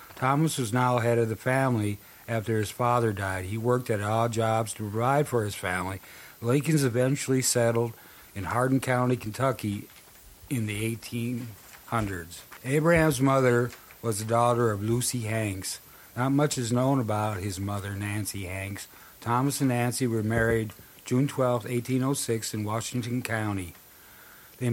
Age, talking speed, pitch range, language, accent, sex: 50-69, 145 wpm, 110-125 Hz, English, American, male